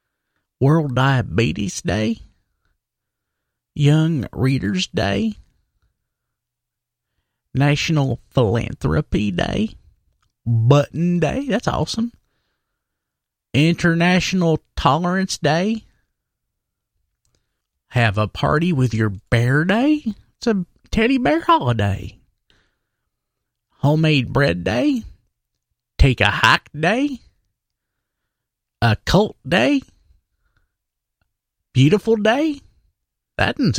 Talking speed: 75 wpm